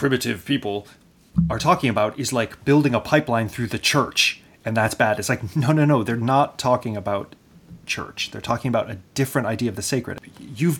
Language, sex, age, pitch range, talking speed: English, male, 30-49, 105-125 Hz, 200 wpm